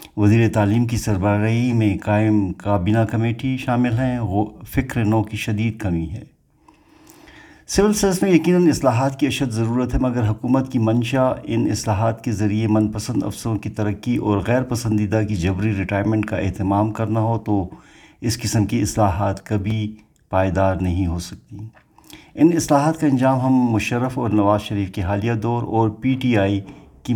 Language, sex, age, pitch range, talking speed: Urdu, male, 50-69, 100-120 Hz, 170 wpm